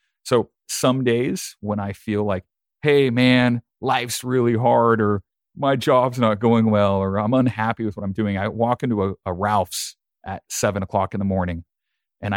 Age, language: 40-59, English